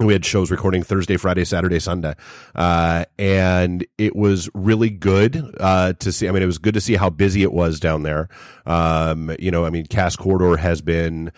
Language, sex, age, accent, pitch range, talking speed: English, male, 30-49, American, 85-100 Hz, 205 wpm